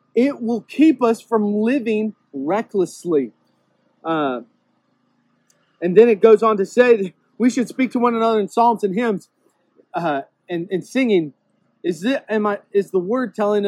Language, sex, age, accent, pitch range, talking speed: English, male, 30-49, American, 175-225 Hz, 160 wpm